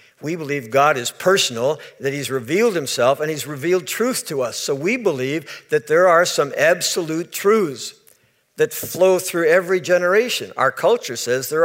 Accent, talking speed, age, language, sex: American, 170 wpm, 60-79, English, male